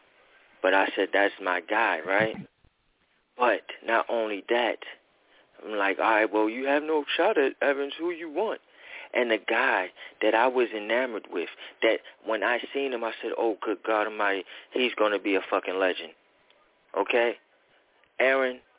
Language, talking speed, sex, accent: English, 170 wpm, male, American